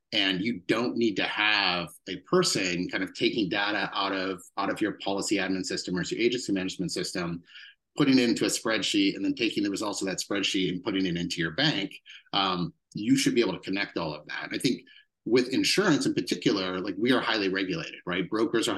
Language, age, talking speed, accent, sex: English, 30-49, 215 wpm, American, male